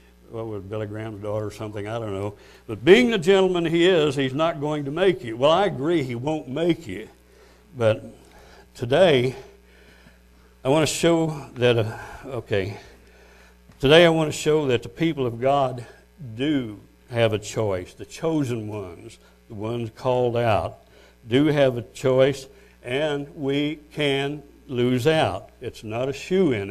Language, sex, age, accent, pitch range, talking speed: English, male, 60-79, American, 105-145 Hz, 160 wpm